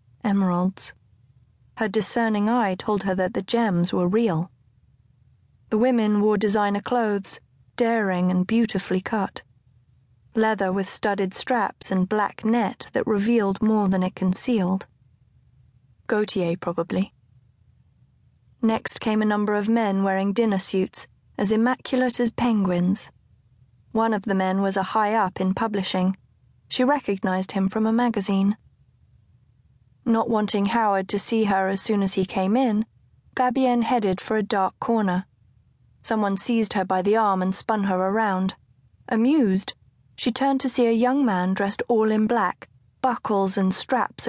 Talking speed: 145 wpm